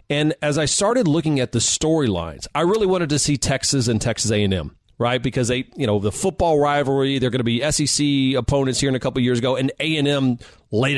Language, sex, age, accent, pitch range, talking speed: English, male, 40-59, American, 115-160 Hz, 245 wpm